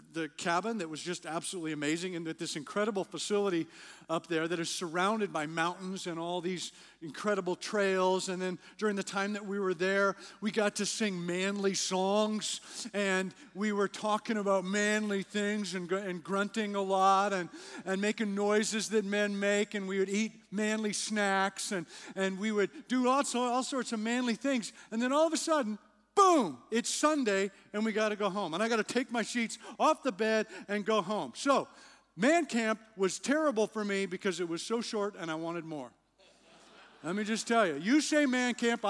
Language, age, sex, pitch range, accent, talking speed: English, 50-69, male, 185-225 Hz, American, 200 wpm